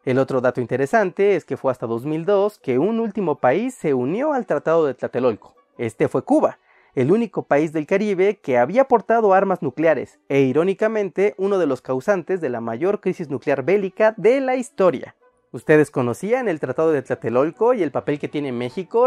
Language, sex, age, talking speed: Spanish, male, 30-49, 185 wpm